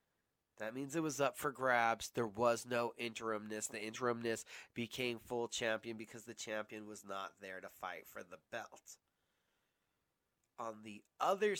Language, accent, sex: English, American, male